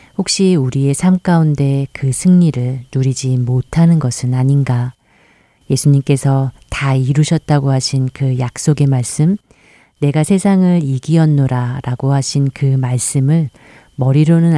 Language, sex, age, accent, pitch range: Korean, female, 40-59, native, 130-155 Hz